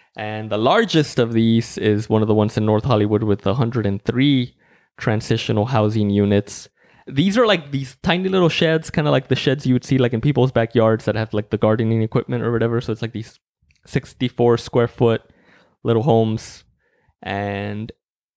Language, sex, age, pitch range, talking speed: English, male, 20-39, 110-135 Hz, 180 wpm